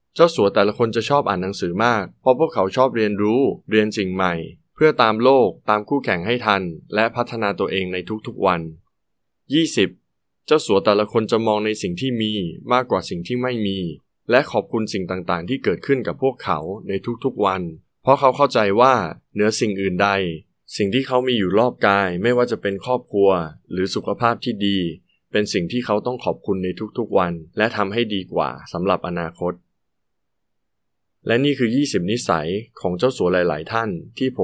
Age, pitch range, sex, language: 20-39, 90-120 Hz, male, Thai